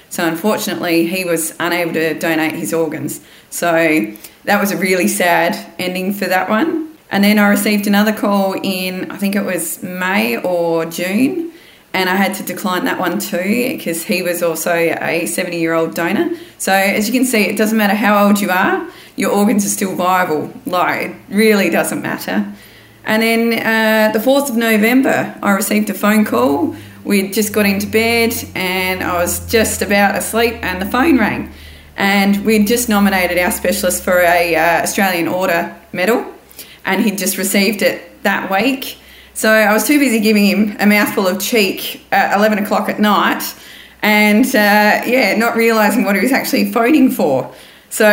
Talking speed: 180 wpm